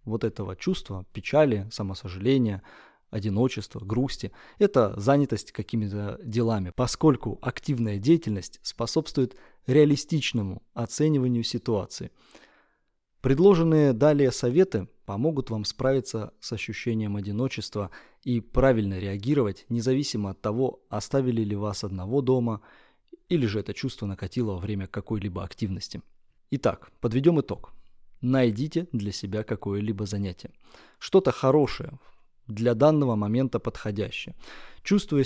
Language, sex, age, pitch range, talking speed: Russian, male, 20-39, 105-140 Hz, 105 wpm